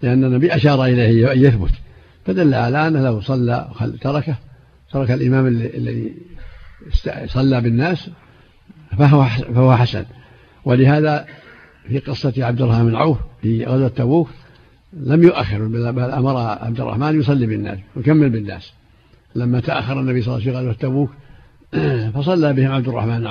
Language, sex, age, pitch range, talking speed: Arabic, male, 70-89, 115-140 Hz, 140 wpm